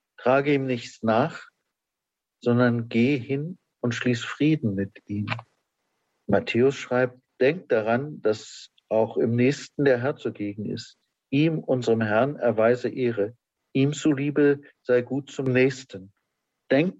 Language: German